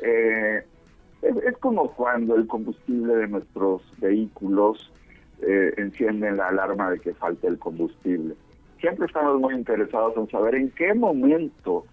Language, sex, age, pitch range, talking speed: Spanish, male, 50-69, 95-130 Hz, 140 wpm